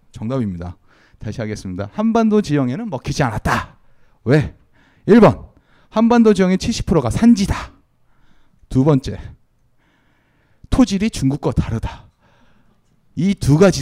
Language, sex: Korean, male